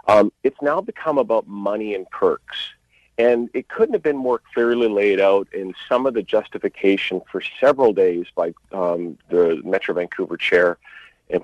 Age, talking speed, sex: 50-69, 170 wpm, male